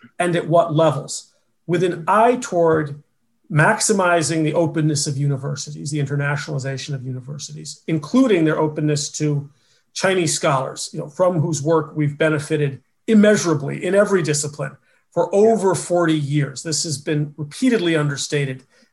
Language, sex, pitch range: English, male, 145-175 Hz